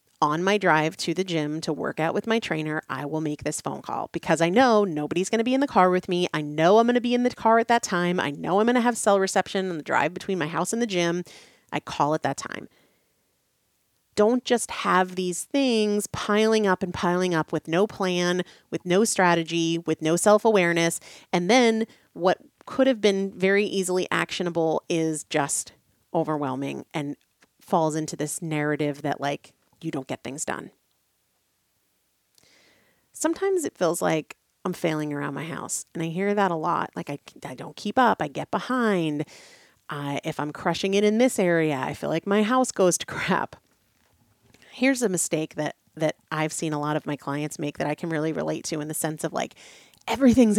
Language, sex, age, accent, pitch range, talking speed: English, female, 30-49, American, 155-205 Hz, 200 wpm